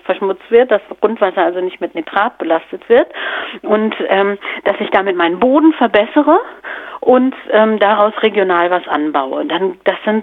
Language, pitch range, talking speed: German, 185-235 Hz, 155 wpm